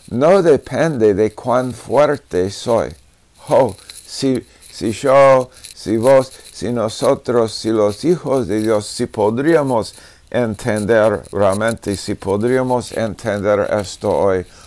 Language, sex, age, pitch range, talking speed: Spanish, male, 50-69, 95-115 Hz, 115 wpm